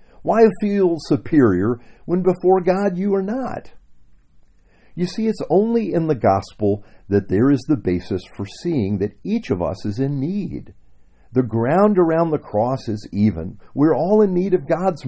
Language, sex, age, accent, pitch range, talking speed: English, male, 50-69, American, 95-155 Hz, 170 wpm